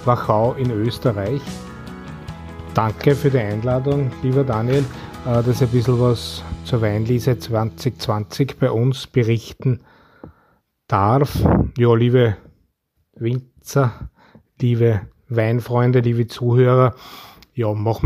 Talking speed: 100 wpm